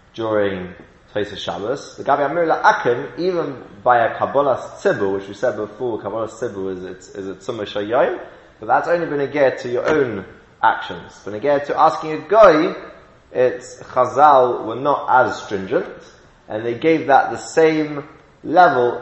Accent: British